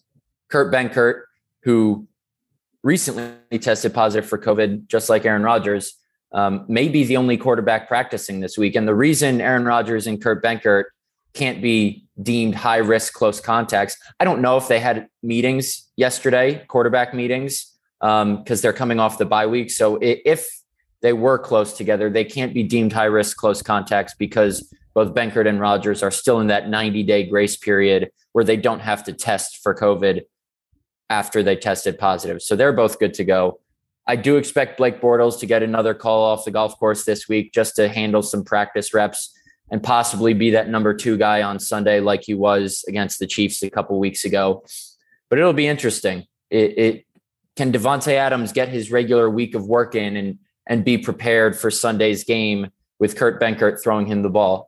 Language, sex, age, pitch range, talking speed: English, male, 20-39, 105-120 Hz, 180 wpm